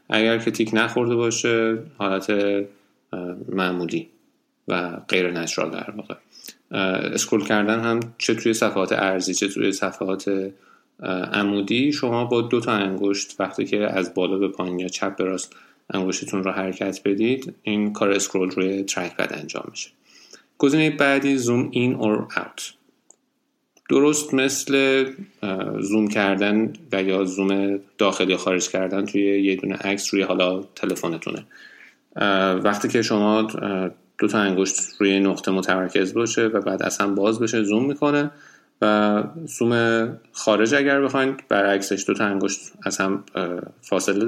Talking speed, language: 135 wpm, Persian